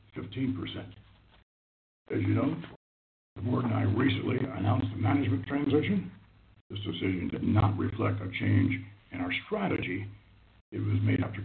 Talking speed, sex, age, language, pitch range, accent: 145 wpm, male, 60-79, English, 95-120 Hz, American